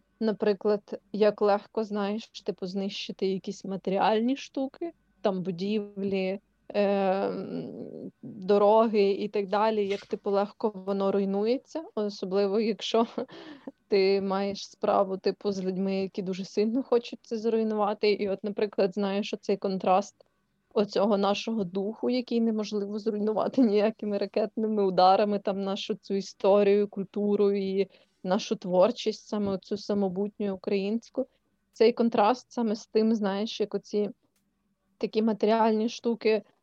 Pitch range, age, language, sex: 200-220 Hz, 20-39, Ukrainian, female